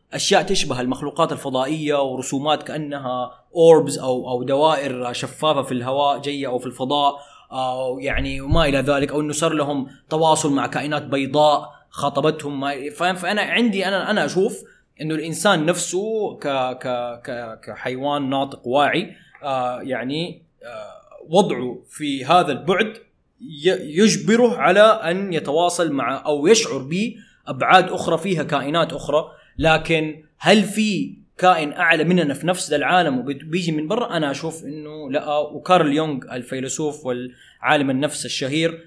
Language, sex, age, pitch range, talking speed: Arabic, male, 20-39, 130-165 Hz, 130 wpm